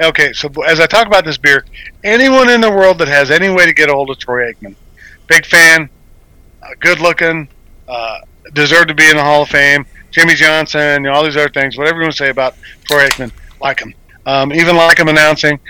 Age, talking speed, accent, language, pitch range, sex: 50-69, 220 wpm, American, English, 135-170 Hz, male